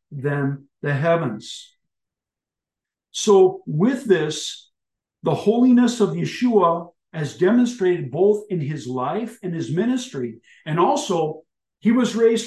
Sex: male